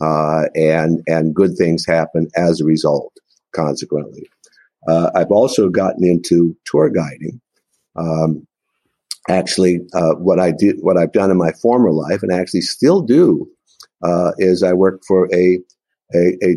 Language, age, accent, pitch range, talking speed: English, 50-69, American, 80-90 Hz, 150 wpm